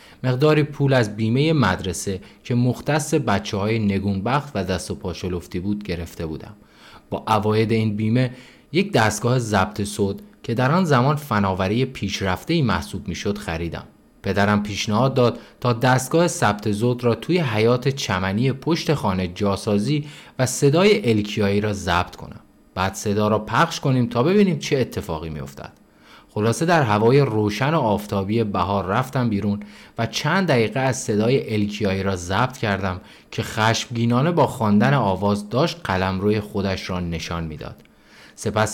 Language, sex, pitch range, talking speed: Persian, male, 100-130 Hz, 150 wpm